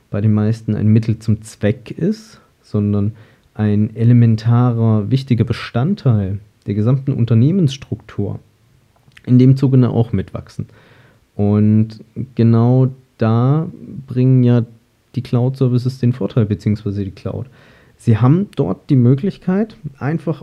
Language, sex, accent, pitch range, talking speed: German, male, German, 110-130 Hz, 115 wpm